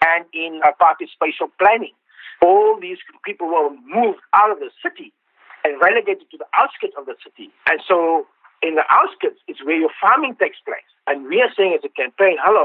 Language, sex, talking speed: English, male, 195 wpm